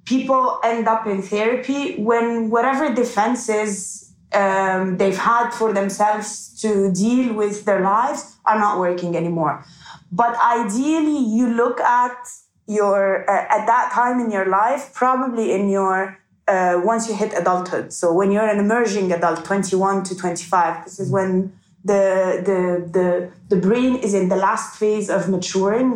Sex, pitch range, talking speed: female, 185-235 Hz, 155 wpm